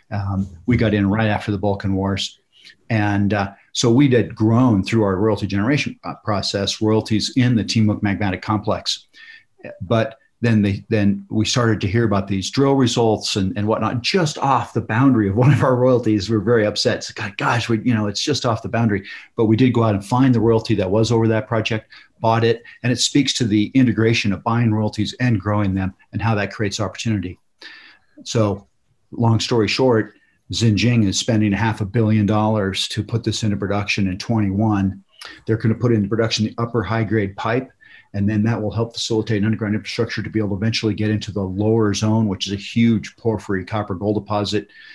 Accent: American